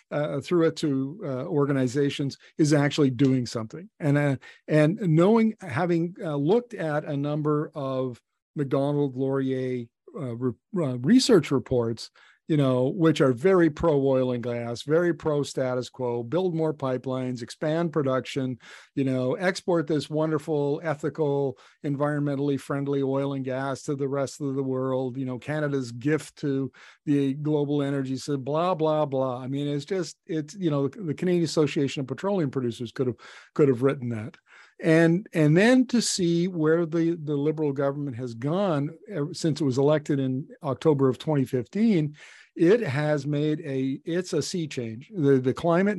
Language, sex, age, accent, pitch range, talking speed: English, male, 50-69, American, 130-160 Hz, 165 wpm